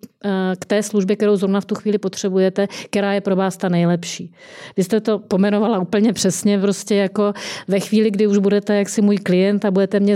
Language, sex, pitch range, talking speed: Czech, female, 190-205 Hz, 200 wpm